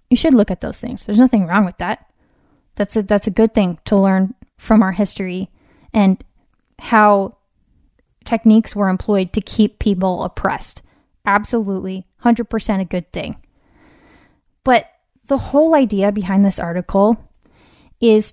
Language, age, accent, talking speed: English, 10-29, American, 140 wpm